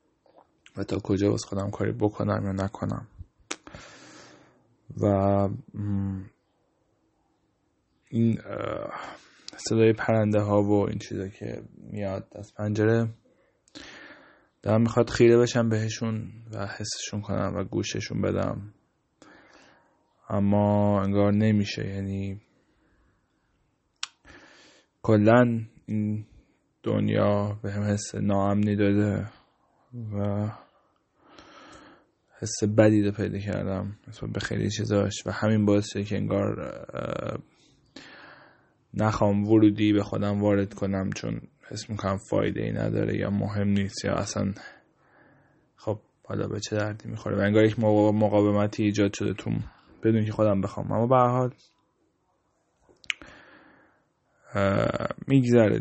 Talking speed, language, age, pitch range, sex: 100 wpm, Persian, 20-39, 100-110 Hz, male